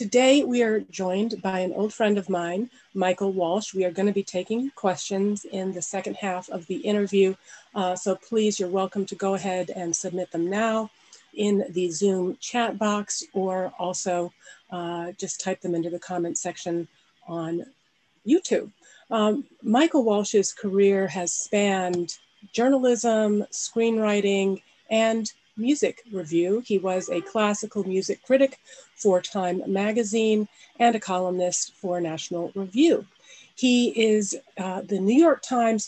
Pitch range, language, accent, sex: 185-230 Hz, English, American, female